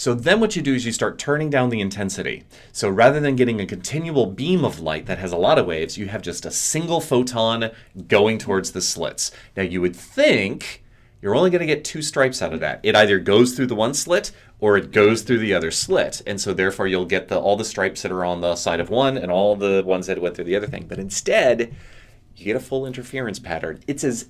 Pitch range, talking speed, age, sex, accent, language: 105-140 Hz, 245 wpm, 30-49, male, American, English